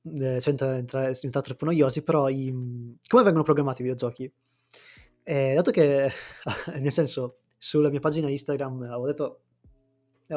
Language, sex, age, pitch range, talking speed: Italian, male, 20-39, 125-150 Hz, 140 wpm